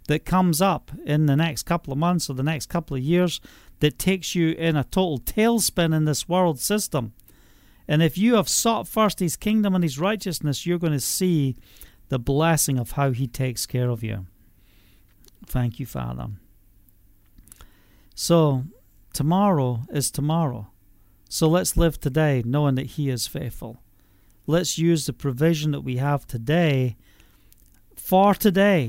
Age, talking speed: 40-59, 160 wpm